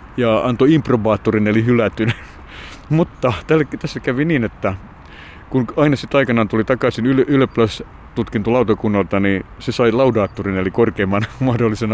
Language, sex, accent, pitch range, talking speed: Finnish, male, native, 105-125 Hz, 125 wpm